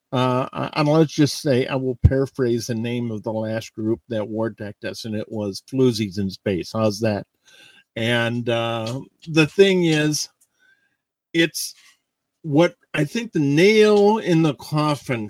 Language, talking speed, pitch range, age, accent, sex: English, 155 wpm, 120-155 Hz, 50-69, American, male